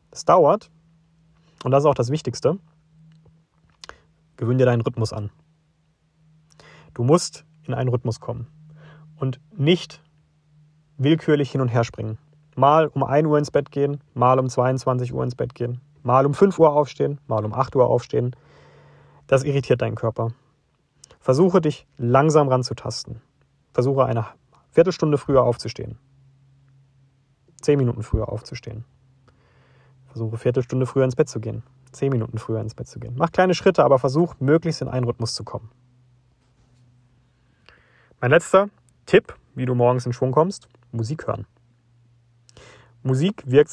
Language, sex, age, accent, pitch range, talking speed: German, male, 30-49, German, 115-150 Hz, 145 wpm